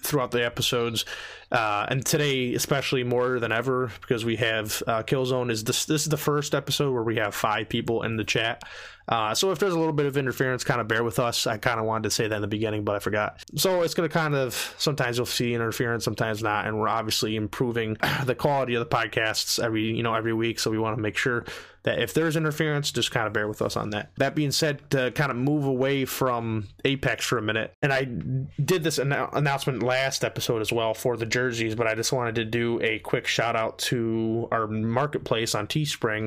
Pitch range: 110-135 Hz